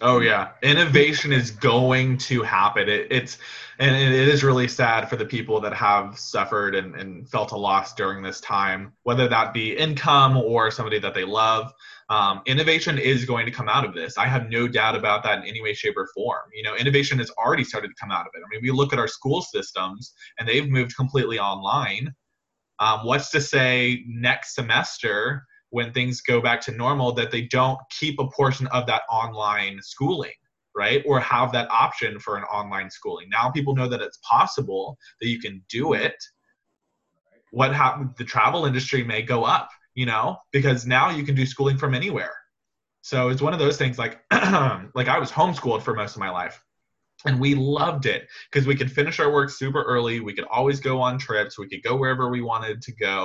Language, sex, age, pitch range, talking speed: English, male, 20-39, 115-140 Hz, 205 wpm